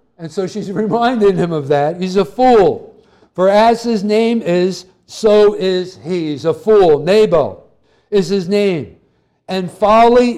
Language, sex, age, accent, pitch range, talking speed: English, male, 60-79, American, 175-215 Hz, 155 wpm